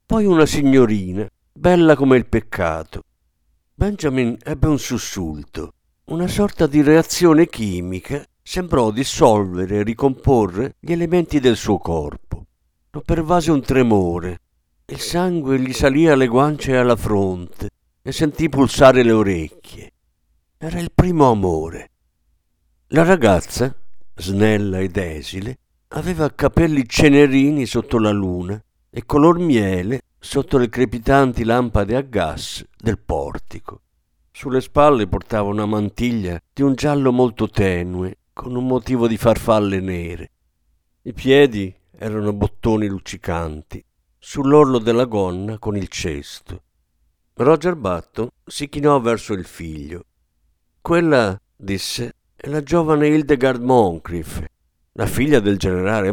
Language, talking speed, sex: Italian, 120 wpm, male